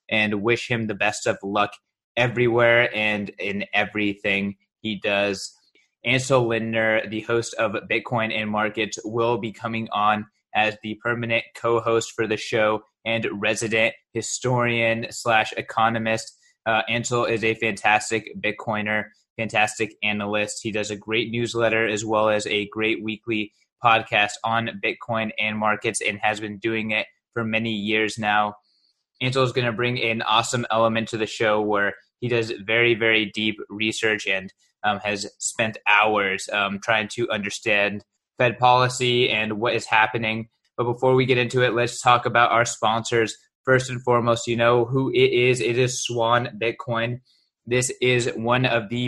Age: 20-39